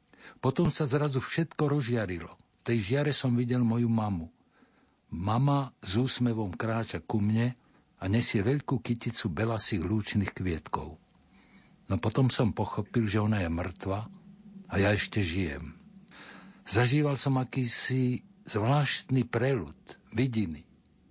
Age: 60-79